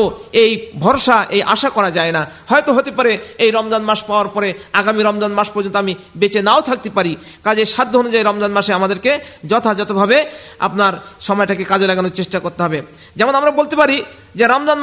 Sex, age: male, 50-69